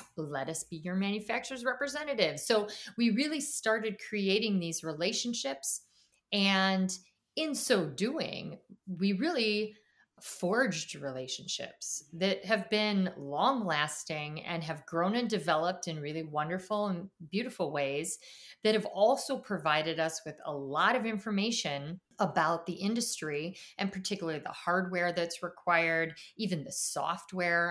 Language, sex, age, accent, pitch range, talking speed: English, female, 30-49, American, 155-195 Hz, 130 wpm